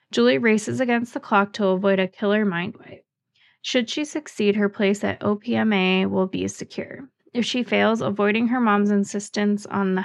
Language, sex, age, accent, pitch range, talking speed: English, female, 20-39, American, 190-230 Hz, 180 wpm